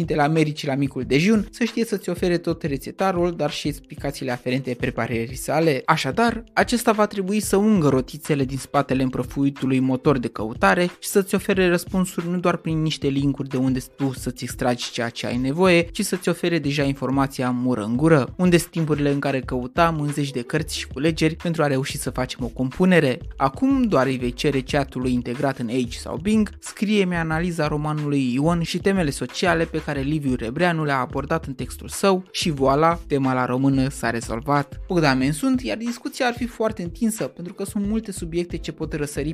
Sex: male